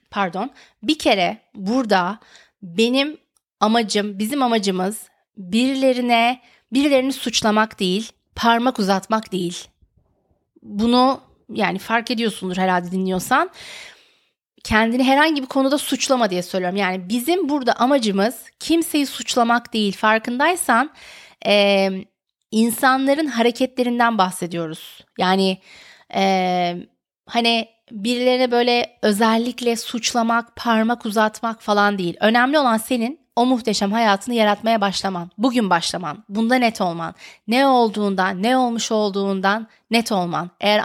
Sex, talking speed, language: female, 105 wpm, Turkish